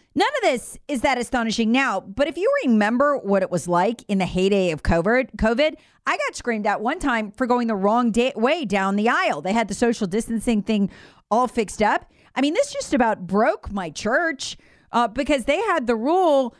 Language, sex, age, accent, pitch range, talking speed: English, female, 40-59, American, 200-265 Hz, 205 wpm